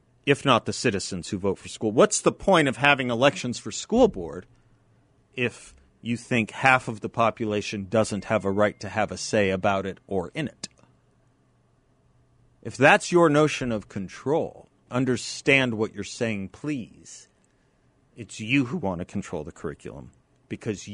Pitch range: 100-130 Hz